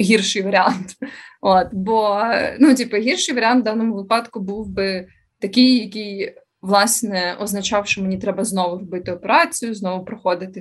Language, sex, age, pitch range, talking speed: Ukrainian, female, 20-39, 195-240 Hz, 140 wpm